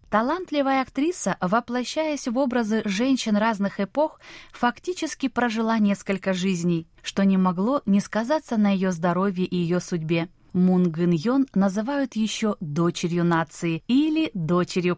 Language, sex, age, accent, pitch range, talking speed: Russian, female, 20-39, native, 175-235 Hz, 130 wpm